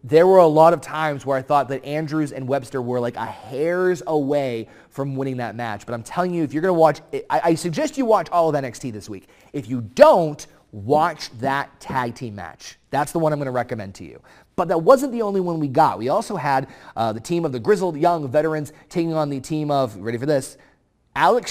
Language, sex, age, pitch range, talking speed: English, male, 30-49, 120-155 Hz, 240 wpm